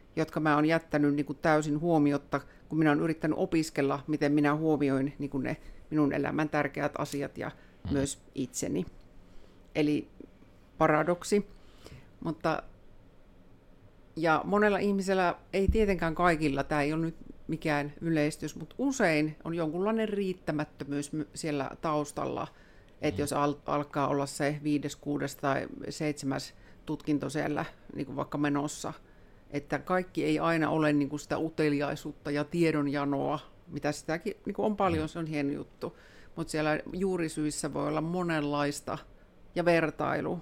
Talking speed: 130 wpm